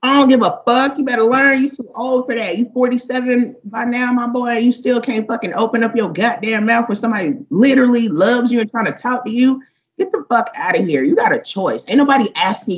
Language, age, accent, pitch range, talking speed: English, 30-49, American, 170-245 Hz, 245 wpm